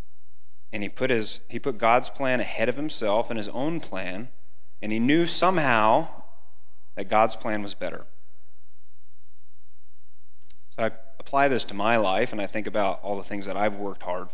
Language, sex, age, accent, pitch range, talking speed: English, male, 30-49, American, 90-110 Hz, 175 wpm